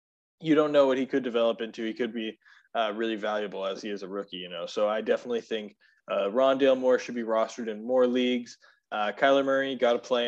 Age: 20-39